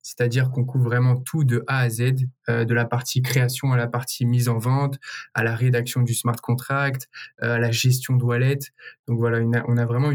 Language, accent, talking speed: French, French, 220 wpm